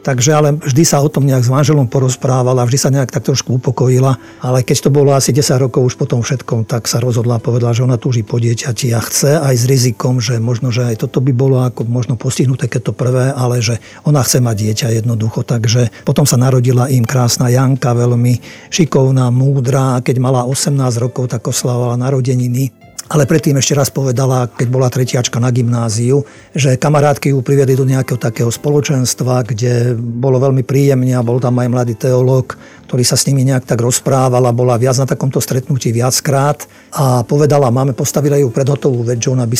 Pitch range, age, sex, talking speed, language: 125-140 Hz, 50-69, male, 200 wpm, Slovak